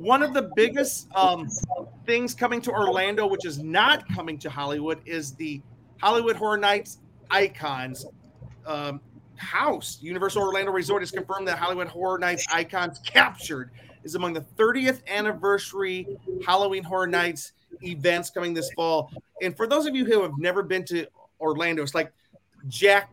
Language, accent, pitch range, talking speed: English, American, 155-205 Hz, 155 wpm